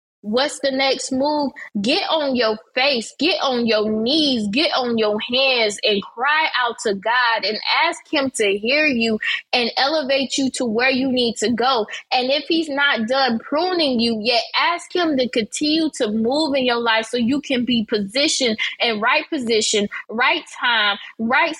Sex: female